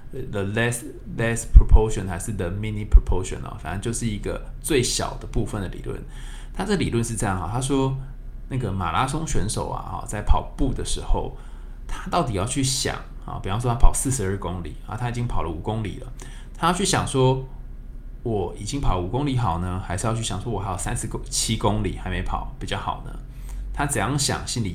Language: Chinese